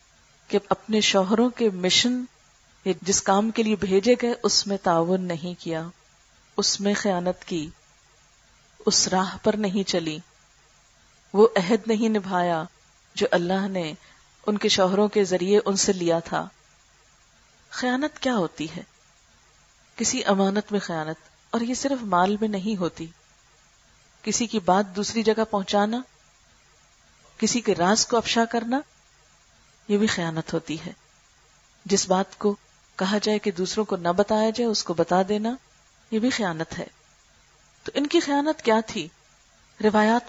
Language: Urdu